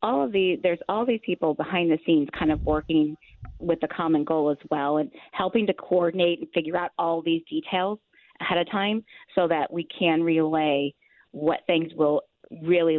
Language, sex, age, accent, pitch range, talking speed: English, female, 30-49, American, 155-190 Hz, 190 wpm